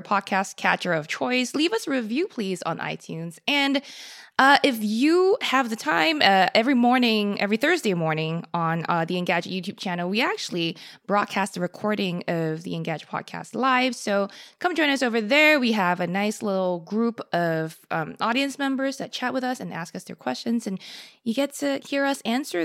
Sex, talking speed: female, 190 wpm